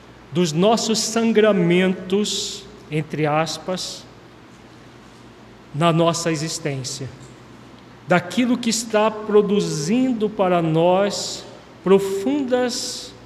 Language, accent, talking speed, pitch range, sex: Portuguese, Brazilian, 70 wpm, 155-210 Hz, male